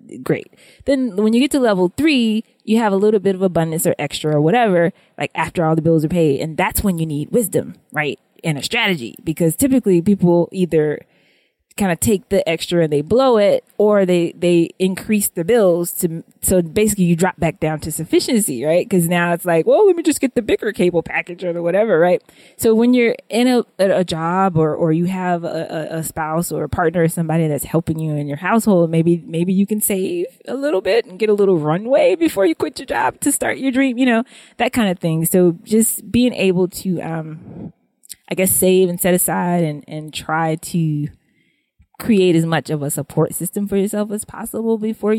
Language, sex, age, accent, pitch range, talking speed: English, female, 20-39, American, 160-210 Hz, 215 wpm